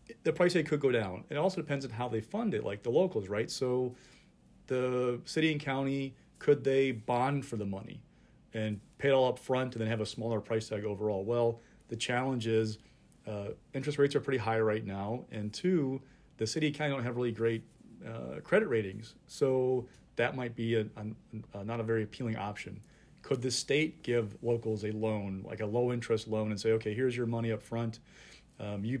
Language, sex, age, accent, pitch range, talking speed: English, male, 40-59, American, 110-135 Hz, 210 wpm